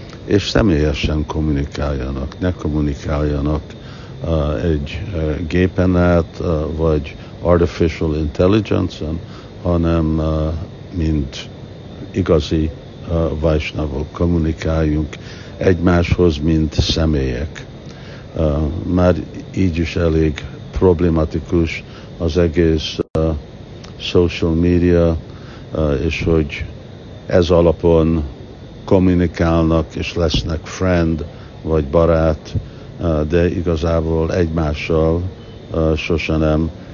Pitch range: 80-90 Hz